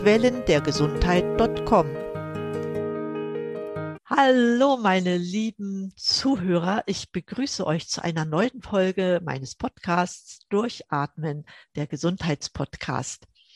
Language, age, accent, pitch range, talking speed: German, 50-69, German, 160-215 Hz, 70 wpm